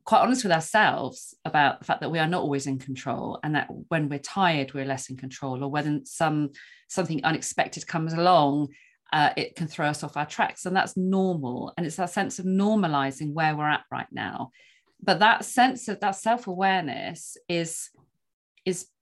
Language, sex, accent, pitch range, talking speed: English, female, British, 145-185 Hz, 190 wpm